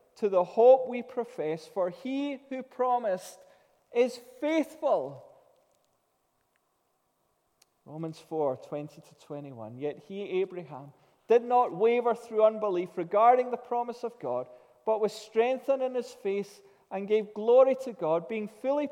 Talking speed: 125 wpm